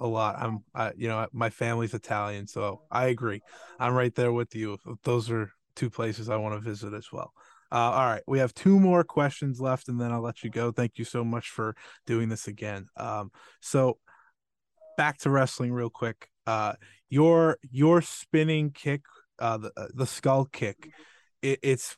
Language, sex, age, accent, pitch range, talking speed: English, male, 20-39, American, 115-135 Hz, 185 wpm